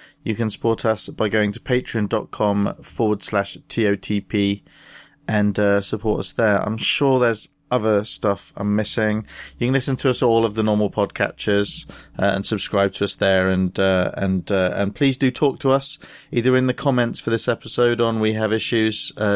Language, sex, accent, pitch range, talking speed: English, male, British, 105-135 Hz, 185 wpm